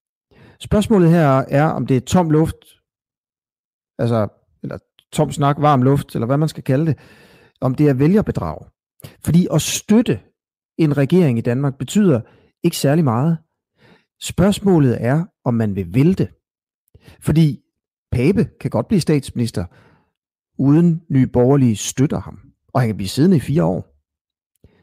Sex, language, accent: male, Danish, native